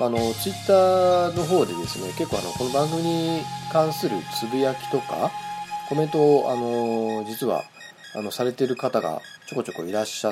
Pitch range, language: 110-180 Hz, Japanese